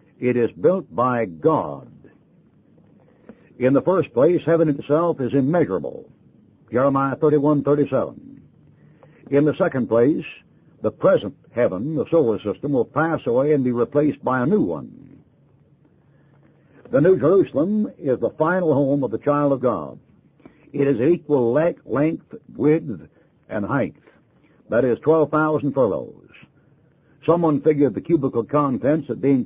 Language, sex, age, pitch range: English, male, 60-79, 135-155 Hz